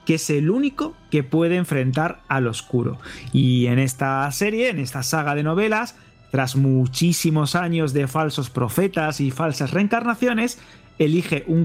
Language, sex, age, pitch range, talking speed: Spanish, male, 30-49, 130-170 Hz, 150 wpm